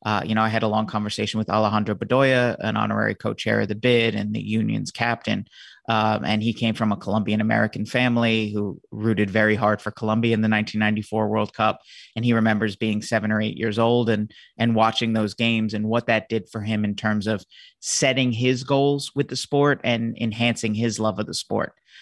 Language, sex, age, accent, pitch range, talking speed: English, male, 30-49, American, 110-120 Hz, 205 wpm